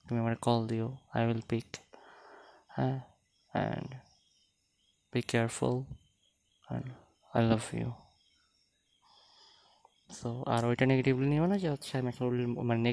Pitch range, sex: 110-125 Hz, male